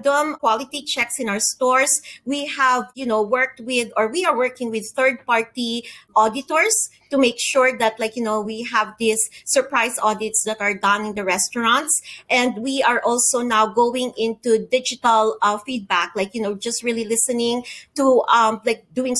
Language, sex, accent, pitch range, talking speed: English, female, Filipino, 215-260 Hz, 180 wpm